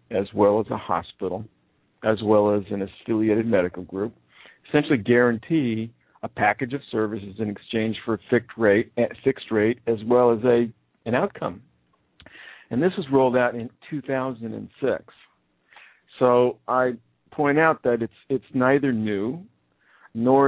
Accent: American